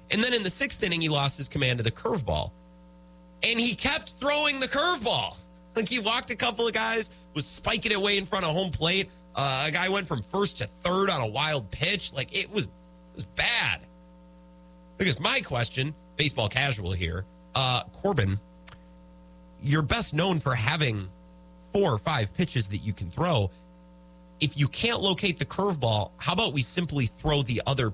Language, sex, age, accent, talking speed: English, male, 30-49, American, 185 wpm